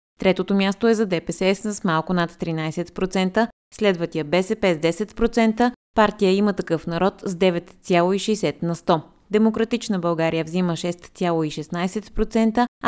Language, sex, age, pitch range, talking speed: Bulgarian, female, 20-39, 165-210 Hz, 115 wpm